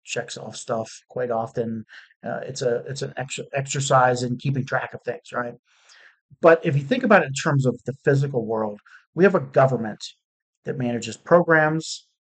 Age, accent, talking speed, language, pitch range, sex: 50-69, American, 180 wpm, English, 130-165 Hz, male